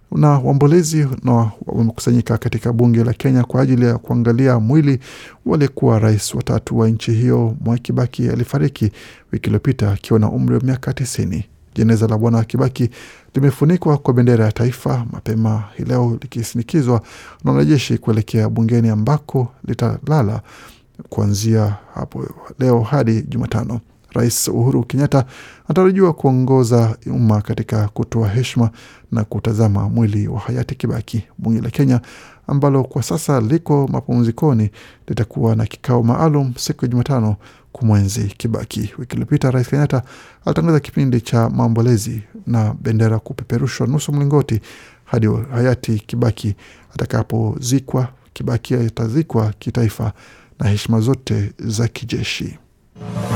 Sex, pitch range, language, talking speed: male, 110-130 Hz, Swahili, 125 wpm